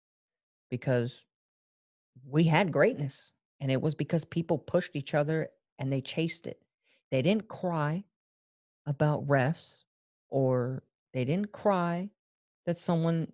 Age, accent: 40-59, American